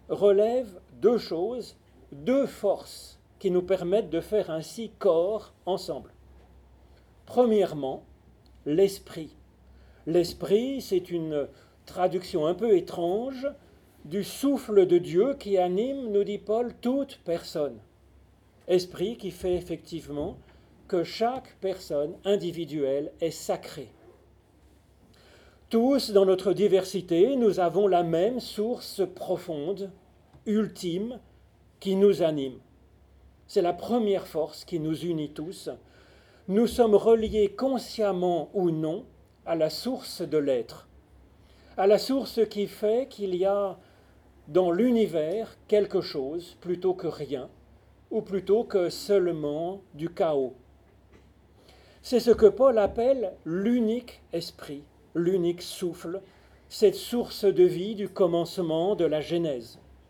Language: French